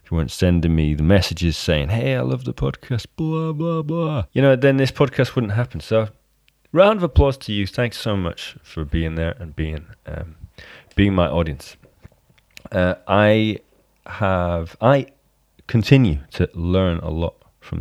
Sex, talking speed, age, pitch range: male, 165 wpm, 30-49, 80-115 Hz